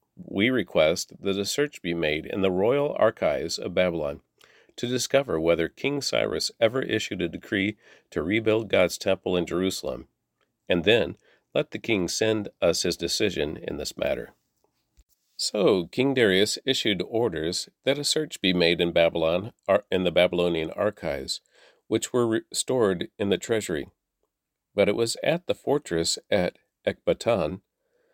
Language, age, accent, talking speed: English, 50-69, American, 150 wpm